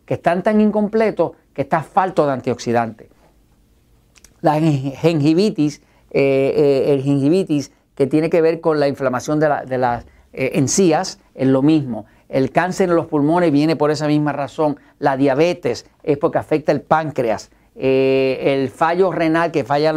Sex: male